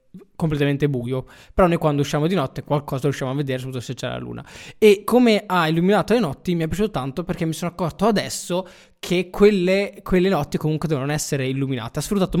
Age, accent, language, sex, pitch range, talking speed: 20-39, native, Italian, male, 140-175 Hz, 205 wpm